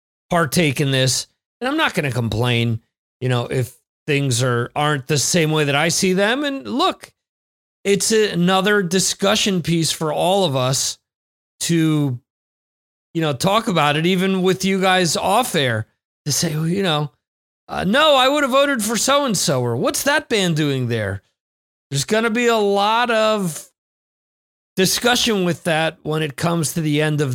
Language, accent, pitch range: English, American, 130-190 Hz